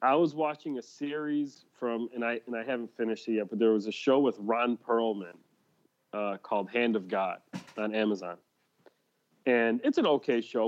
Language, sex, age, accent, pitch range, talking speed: English, male, 30-49, American, 100-125 Hz, 190 wpm